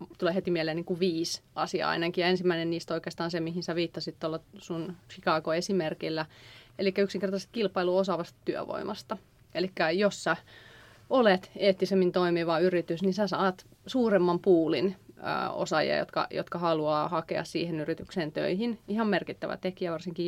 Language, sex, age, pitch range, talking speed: Finnish, female, 30-49, 170-195 Hz, 140 wpm